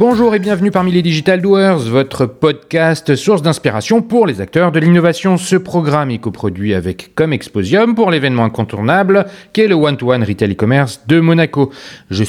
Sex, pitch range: male, 120-185 Hz